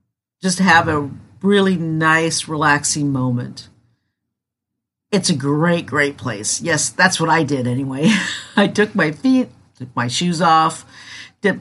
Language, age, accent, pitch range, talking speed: English, 50-69, American, 150-200 Hz, 140 wpm